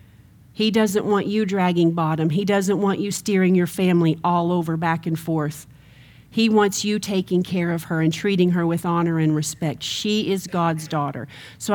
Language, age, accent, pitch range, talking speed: English, 40-59, American, 160-200 Hz, 190 wpm